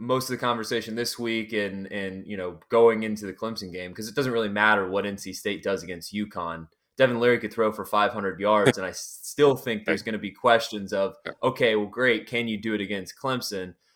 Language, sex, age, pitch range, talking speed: English, male, 20-39, 95-115 Hz, 225 wpm